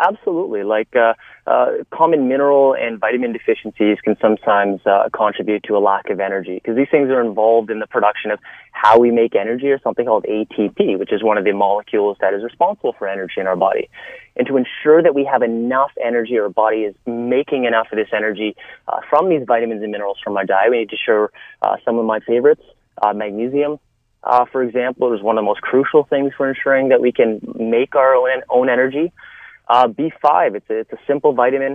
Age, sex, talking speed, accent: 30-49, male, 215 wpm, American